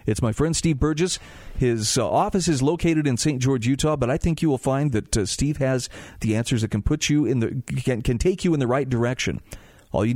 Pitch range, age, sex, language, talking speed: 115-150 Hz, 40-59, male, English, 250 wpm